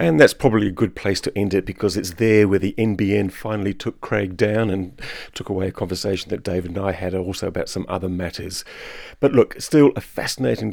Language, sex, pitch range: English, male, 95-115 Hz